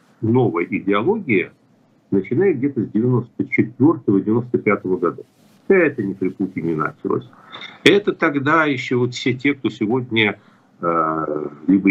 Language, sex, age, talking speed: Russian, male, 50-69, 115 wpm